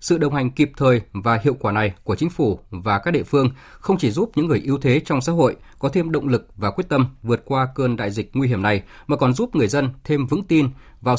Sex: male